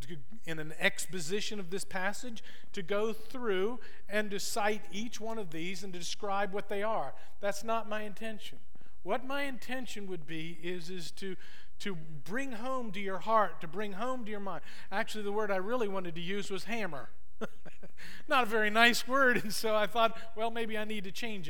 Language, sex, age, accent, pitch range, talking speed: English, male, 50-69, American, 180-230 Hz, 200 wpm